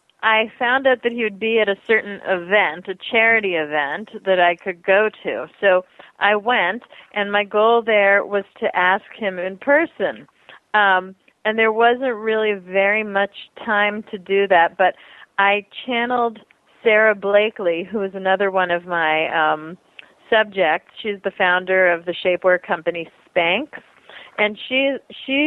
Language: English